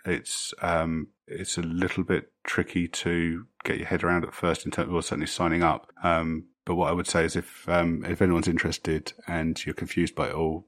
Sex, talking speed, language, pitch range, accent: male, 215 wpm, English, 80-90 Hz, British